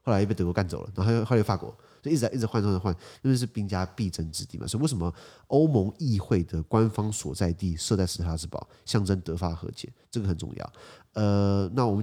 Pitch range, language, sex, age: 90-115 Hz, Chinese, male, 30-49